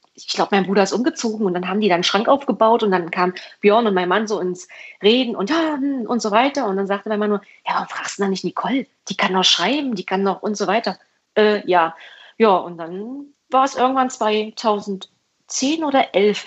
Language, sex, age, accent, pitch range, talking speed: German, female, 30-49, German, 200-265 Hz, 225 wpm